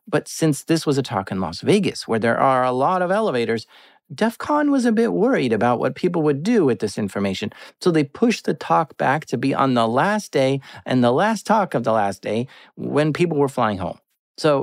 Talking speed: 225 wpm